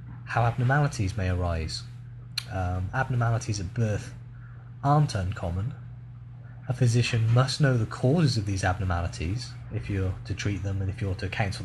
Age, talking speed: 20-39, 150 wpm